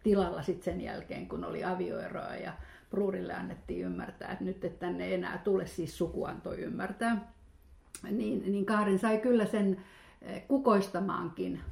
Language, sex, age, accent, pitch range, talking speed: Finnish, female, 50-69, native, 180-215 Hz, 140 wpm